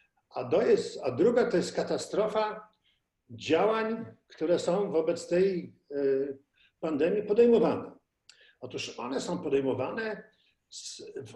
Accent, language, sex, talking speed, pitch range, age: native, Polish, male, 105 wpm, 140-235 Hz, 50-69